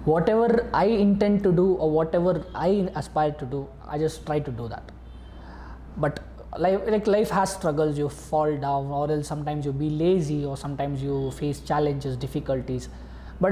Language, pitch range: Kannada, 130-190 Hz